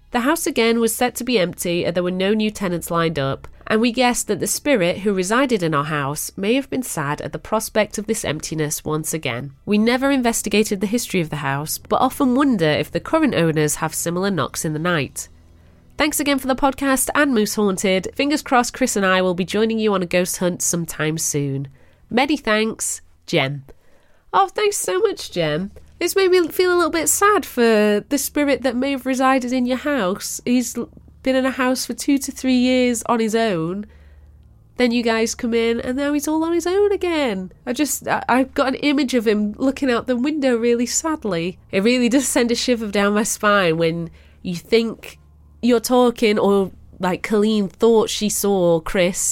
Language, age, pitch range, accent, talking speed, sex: English, 30-49, 170-255 Hz, British, 205 wpm, female